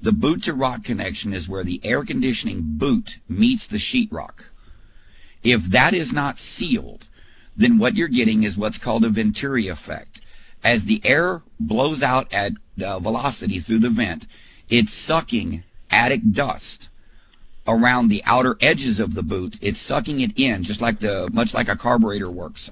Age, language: 50-69, English